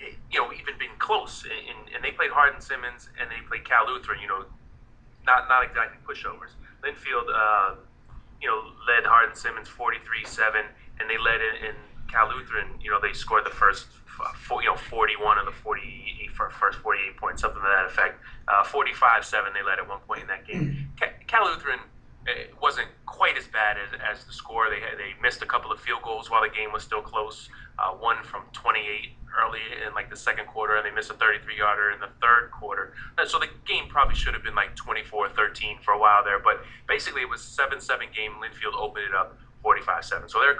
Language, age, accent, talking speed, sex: English, 30-49, American, 225 wpm, male